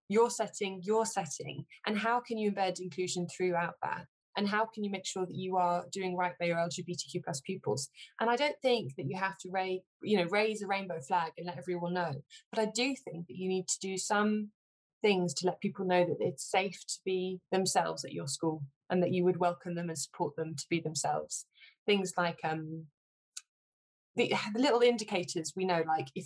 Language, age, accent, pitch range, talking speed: English, 20-39, British, 170-215 Hz, 215 wpm